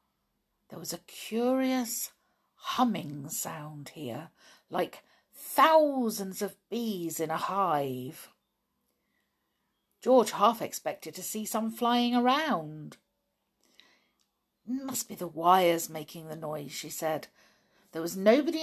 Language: English